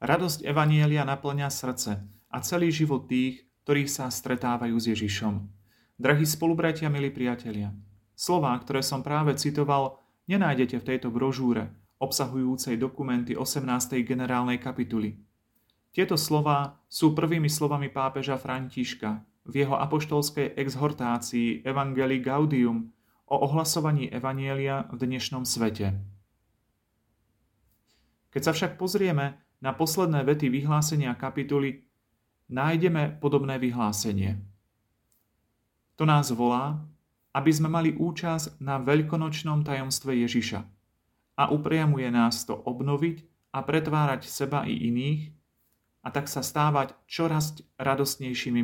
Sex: male